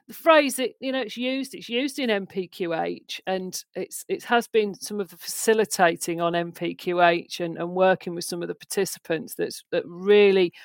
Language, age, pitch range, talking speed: English, 50-69, 175-235 Hz, 180 wpm